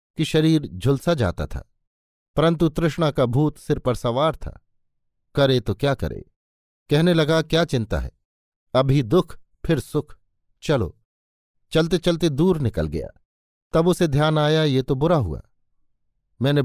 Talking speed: 150 wpm